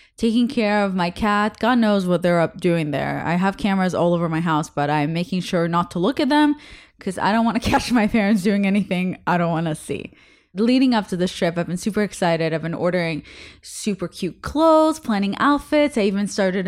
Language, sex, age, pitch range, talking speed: English, female, 20-39, 180-265 Hz, 225 wpm